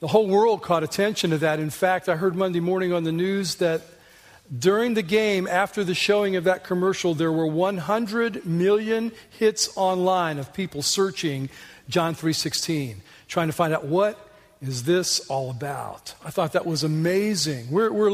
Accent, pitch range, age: American, 170-200 Hz, 40-59